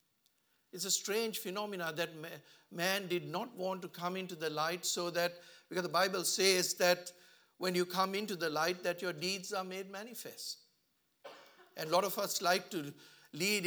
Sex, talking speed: male, 180 wpm